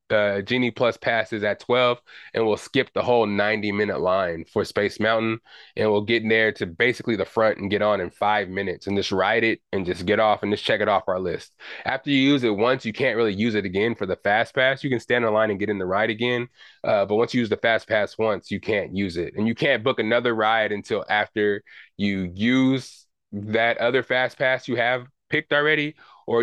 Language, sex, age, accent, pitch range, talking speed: English, male, 20-39, American, 105-125 Hz, 240 wpm